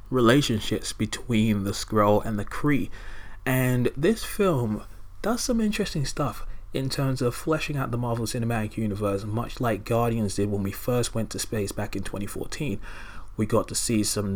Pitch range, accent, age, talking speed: 105-130 Hz, British, 20-39, 170 wpm